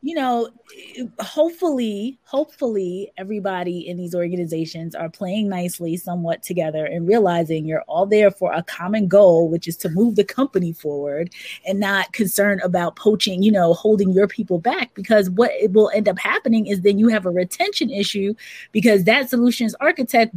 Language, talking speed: English, 170 wpm